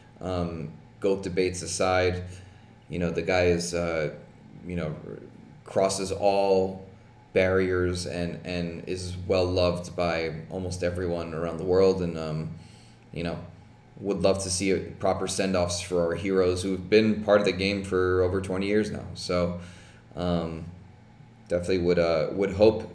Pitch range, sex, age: 90-105 Hz, male, 20-39